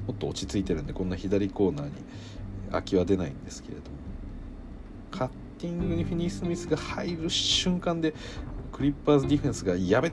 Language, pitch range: Japanese, 95-130 Hz